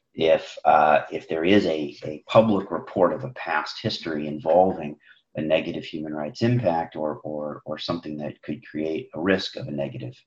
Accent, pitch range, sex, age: American, 75-105 Hz, male, 40-59